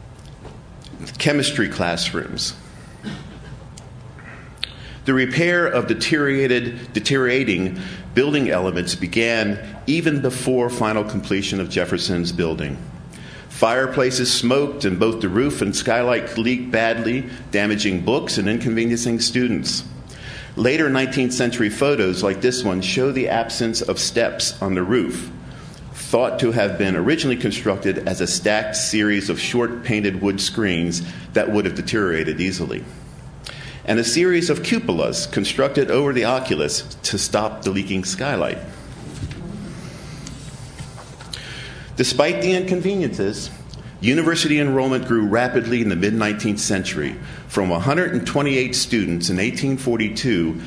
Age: 50-69